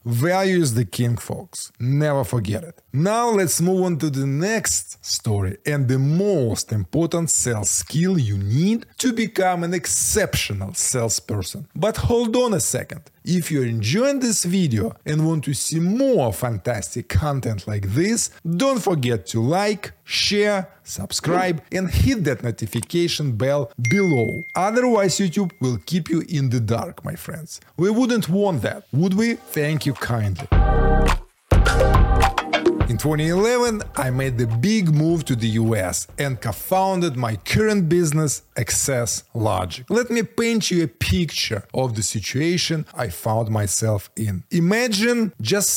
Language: English